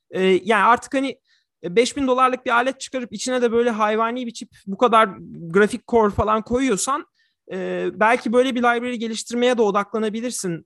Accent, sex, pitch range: native, male, 170-255 Hz